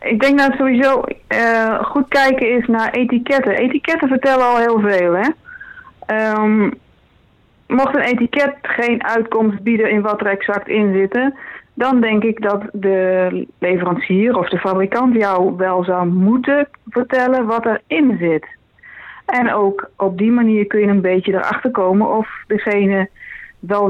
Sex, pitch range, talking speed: female, 185-240 Hz, 155 wpm